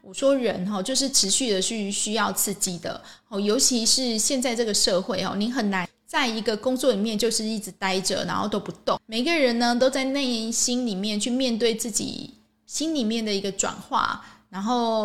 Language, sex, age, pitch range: Chinese, female, 20-39, 200-250 Hz